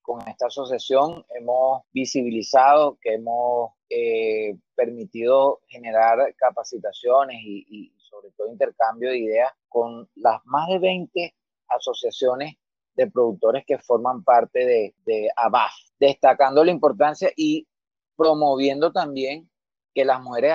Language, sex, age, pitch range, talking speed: Spanish, male, 30-49, 125-160 Hz, 120 wpm